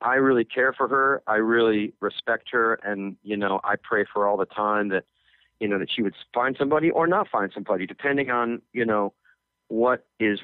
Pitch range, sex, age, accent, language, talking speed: 95-125 Hz, male, 40-59, American, English, 215 wpm